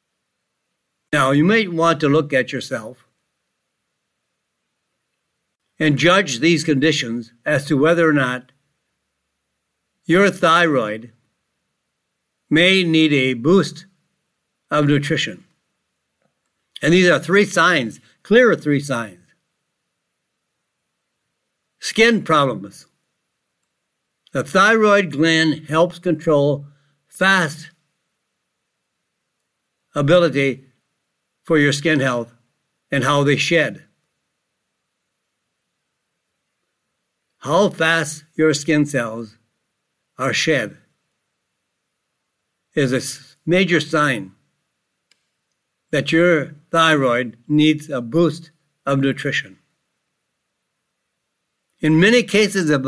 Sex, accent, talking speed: male, American, 85 wpm